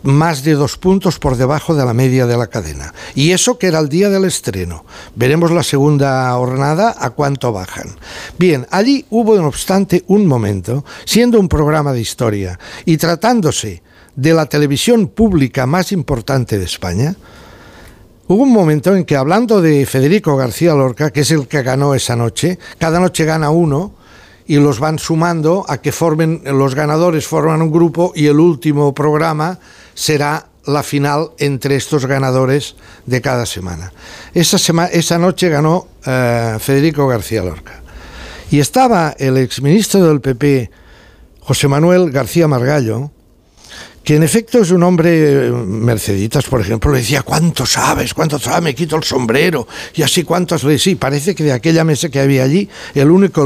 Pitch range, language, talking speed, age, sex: 130-170 Hz, Spanish, 165 wpm, 60-79, male